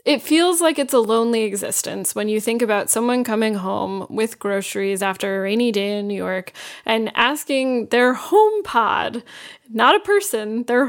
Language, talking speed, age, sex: English, 175 wpm, 10-29, female